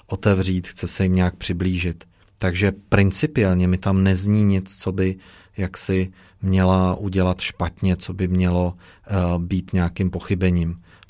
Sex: male